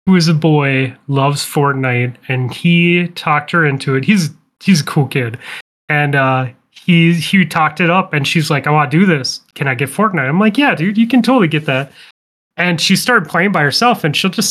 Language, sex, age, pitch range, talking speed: English, male, 30-49, 140-175 Hz, 225 wpm